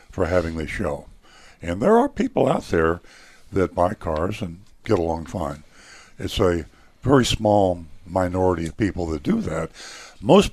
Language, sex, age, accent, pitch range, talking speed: English, male, 60-79, American, 85-100 Hz, 160 wpm